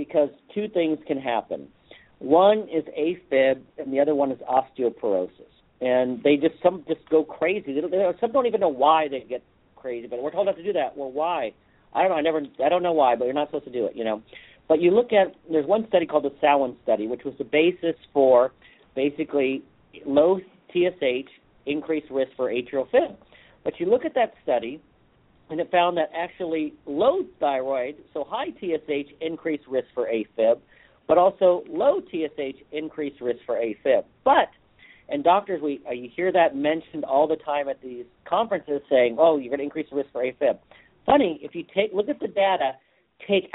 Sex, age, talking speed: male, 50-69, 195 wpm